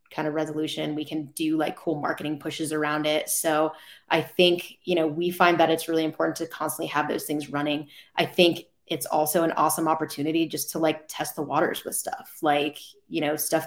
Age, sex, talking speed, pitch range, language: 20-39, female, 210 wpm, 155-175 Hz, English